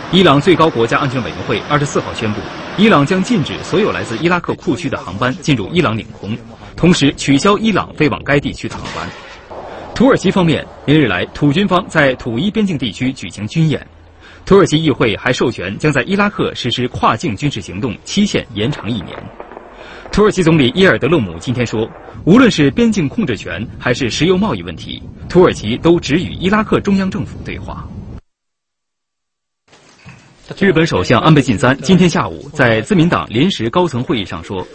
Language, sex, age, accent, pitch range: English, male, 30-49, Chinese, 115-180 Hz